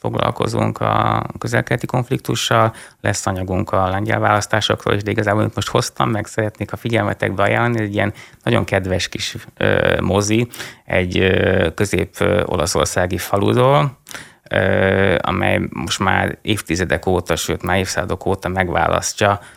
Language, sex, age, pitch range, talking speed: Hungarian, male, 20-39, 90-110 Hz, 125 wpm